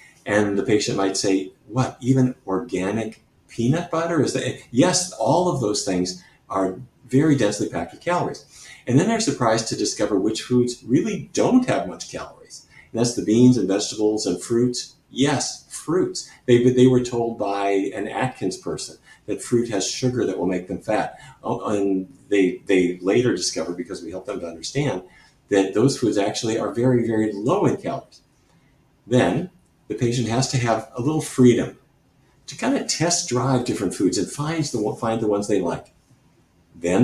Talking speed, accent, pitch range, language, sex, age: 175 wpm, American, 100-130 Hz, English, male, 50-69